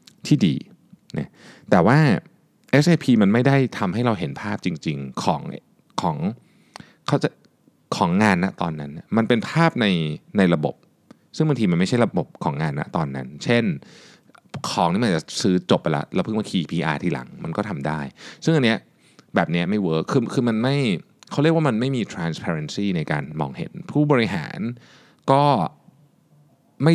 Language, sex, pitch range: Thai, male, 100-150 Hz